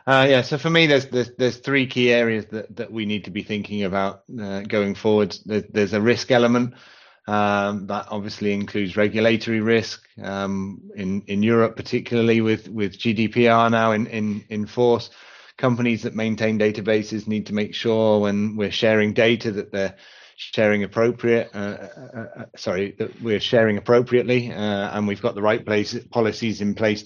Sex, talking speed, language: male, 175 wpm, English